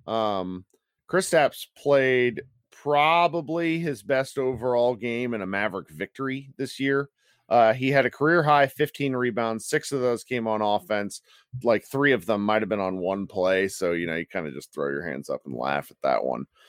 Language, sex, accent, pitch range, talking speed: English, male, American, 105-145 Hz, 200 wpm